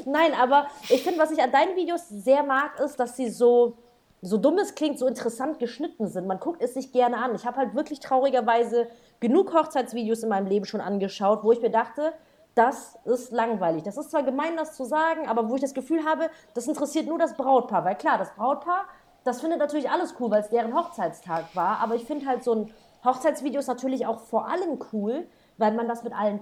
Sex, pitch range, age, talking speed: female, 220-295 Hz, 30-49, 220 wpm